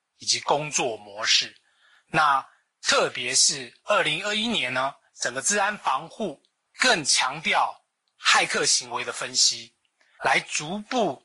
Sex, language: male, Chinese